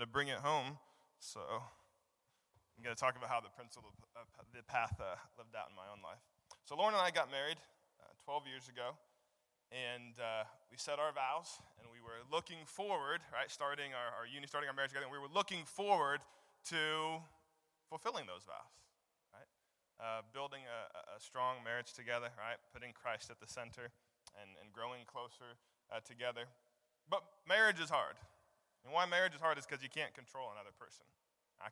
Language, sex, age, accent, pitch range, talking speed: English, male, 20-39, American, 120-155 Hz, 185 wpm